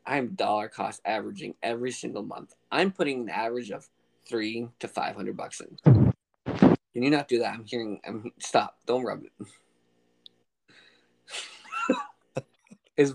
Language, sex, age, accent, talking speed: English, male, 20-39, American, 130 wpm